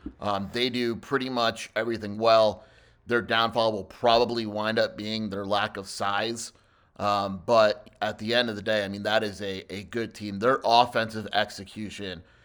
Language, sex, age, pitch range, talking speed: English, male, 30-49, 100-115 Hz, 180 wpm